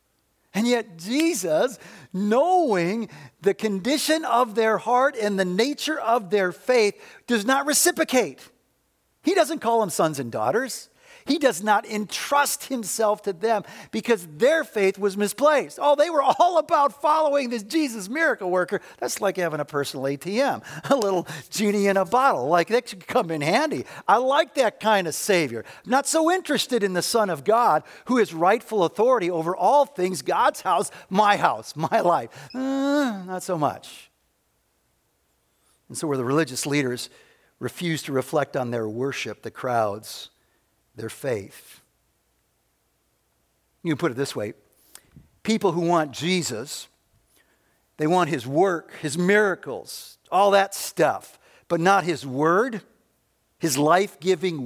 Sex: male